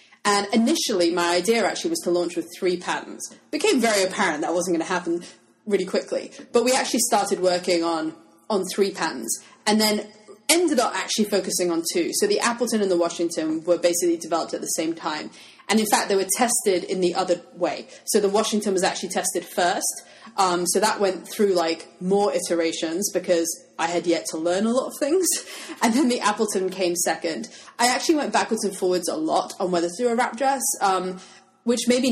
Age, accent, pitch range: 30-49, British, 175-240 Hz